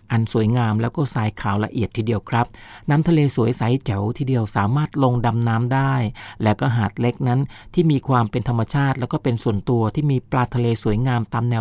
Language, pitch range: Thai, 115-140 Hz